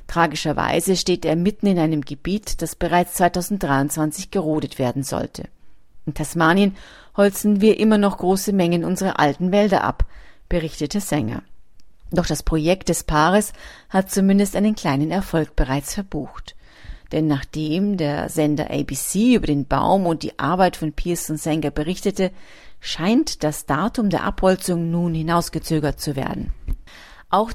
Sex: female